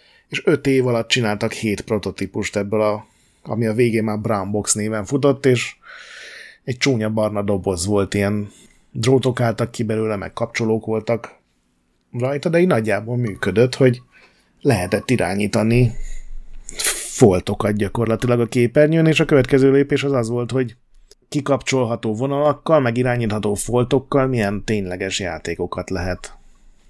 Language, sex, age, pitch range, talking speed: Hungarian, male, 30-49, 105-130 Hz, 135 wpm